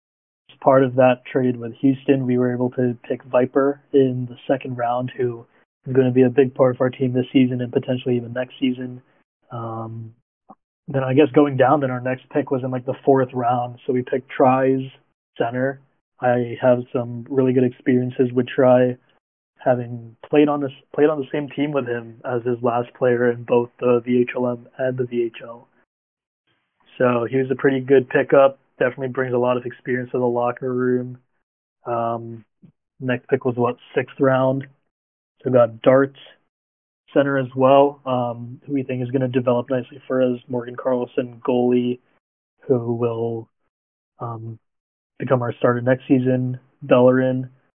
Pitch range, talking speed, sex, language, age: 125-135 Hz, 175 wpm, male, English, 20-39